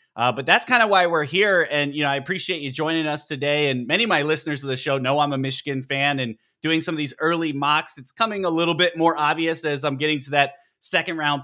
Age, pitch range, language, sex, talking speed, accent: 20-39, 130-150 Hz, English, male, 260 wpm, American